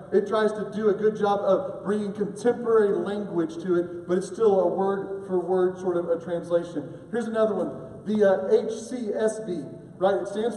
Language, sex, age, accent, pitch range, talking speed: English, male, 40-59, American, 180-260 Hz, 200 wpm